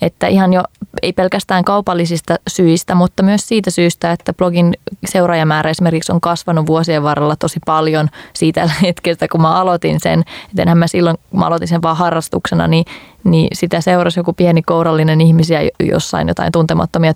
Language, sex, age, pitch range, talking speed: Finnish, female, 20-39, 160-180 Hz, 165 wpm